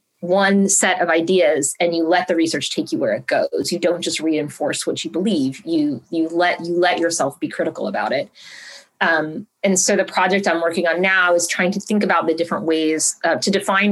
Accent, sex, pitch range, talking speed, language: American, female, 165-205 Hz, 220 wpm, English